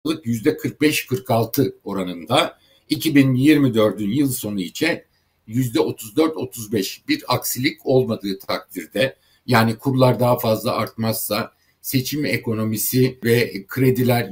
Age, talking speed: 60-79, 90 wpm